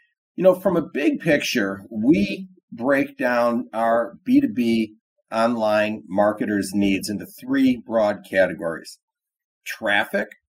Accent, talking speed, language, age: American, 110 wpm, English, 50-69